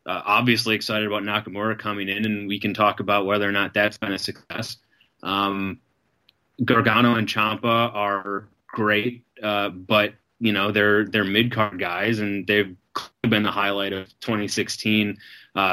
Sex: male